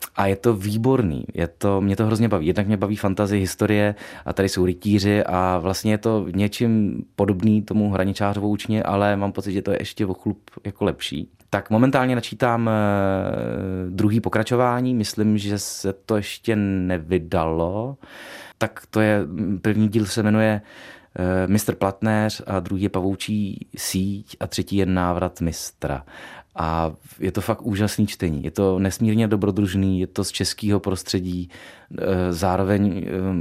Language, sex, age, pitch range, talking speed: Czech, male, 30-49, 95-105 Hz, 155 wpm